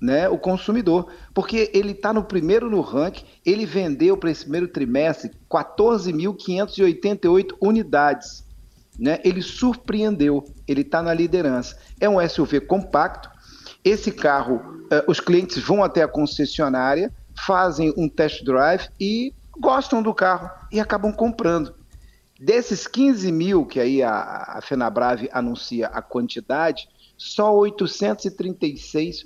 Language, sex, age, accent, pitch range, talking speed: Portuguese, male, 50-69, Brazilian, 145-200 Hz, 120 wpm